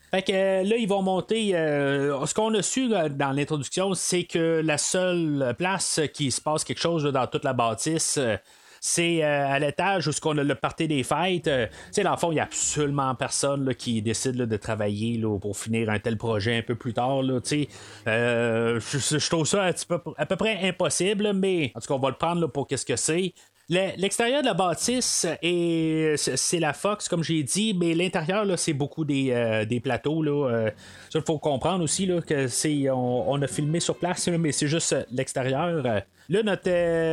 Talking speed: 215 wpm